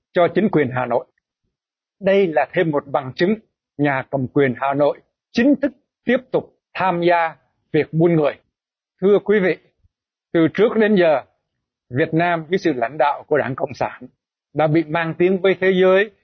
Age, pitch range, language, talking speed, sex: 60-79, 155-195 Hz, Vietnamese, 180 wpm, male